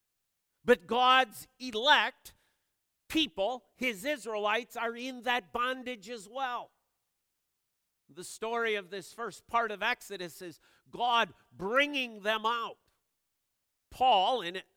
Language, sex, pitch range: English, male, 200-250 Hz